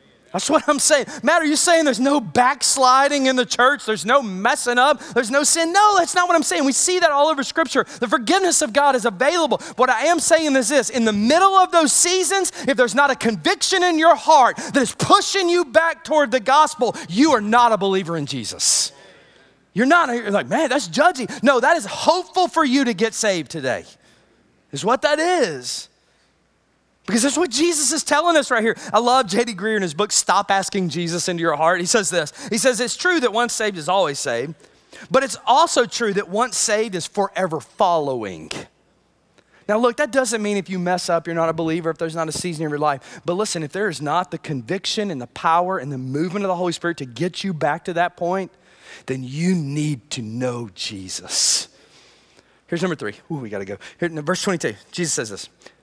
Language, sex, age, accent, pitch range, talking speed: English, male, 30-49, American, 175-295 Hz, 220 wpm